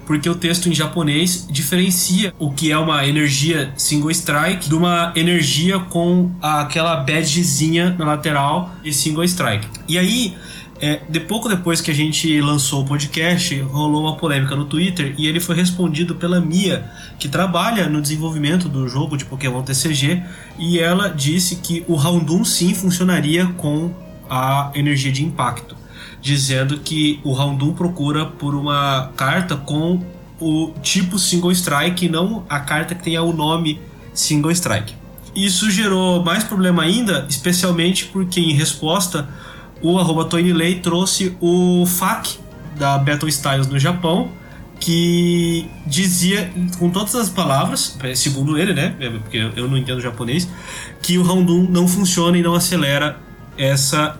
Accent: Brazilian